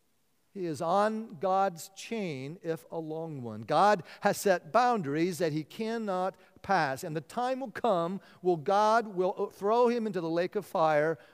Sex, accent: male, American